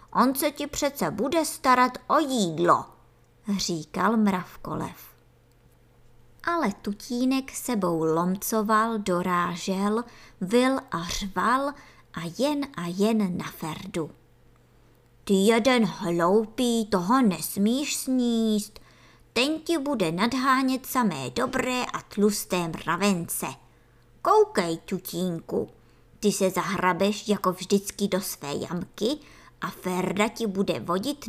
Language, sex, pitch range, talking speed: Czech, male, 185-255 Hz, 105 wpm